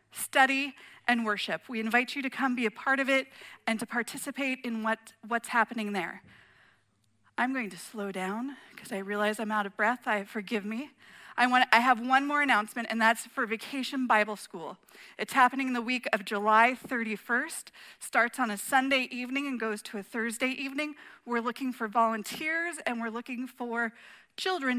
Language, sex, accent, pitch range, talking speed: English, female, American, 210-260 Hz, 185 wpm